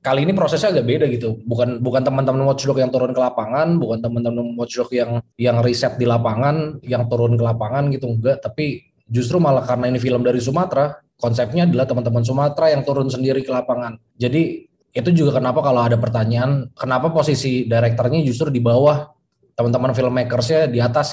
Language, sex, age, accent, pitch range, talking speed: Indonesian, male, 20-39, native, 115-140 Hz, 180 wpm